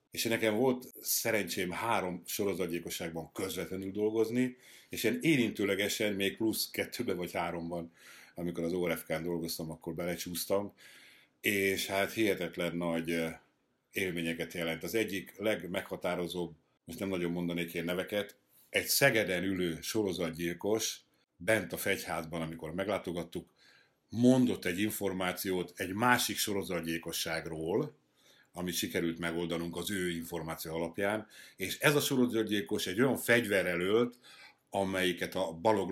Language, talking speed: Hungarian, 115 wpm